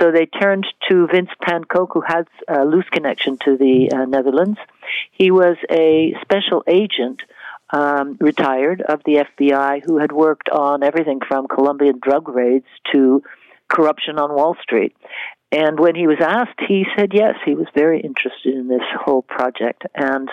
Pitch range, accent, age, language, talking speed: 140-175 Hz, American, 60-79, English, 165 wpm